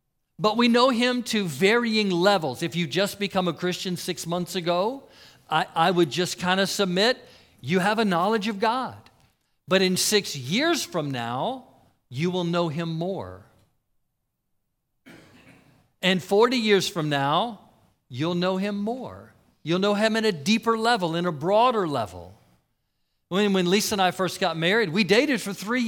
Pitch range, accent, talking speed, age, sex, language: 155-215 Hz, American, 165 wpm, 50-69, male, English